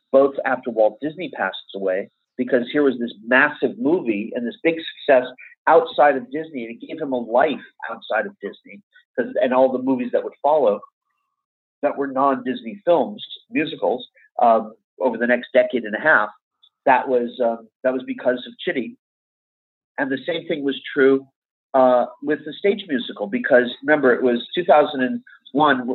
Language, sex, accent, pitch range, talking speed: English, male, American, 120-165 Hz, 165 wpm